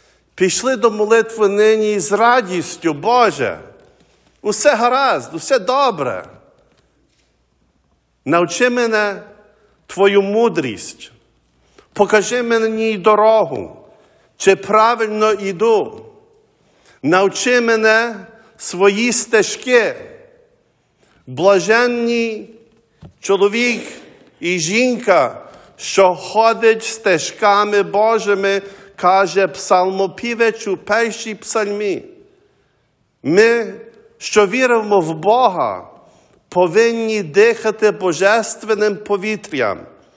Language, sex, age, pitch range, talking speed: English, male, 50-69, 195-230 Hz, 70 wpm